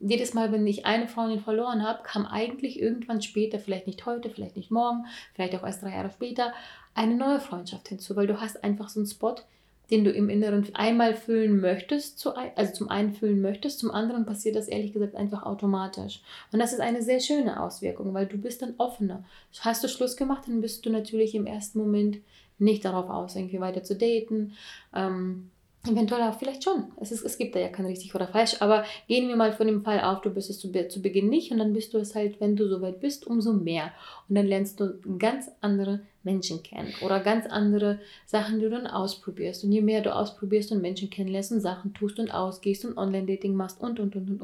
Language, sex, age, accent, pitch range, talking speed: German, female, 30-49, German, 200-230 Hz, 215 wpm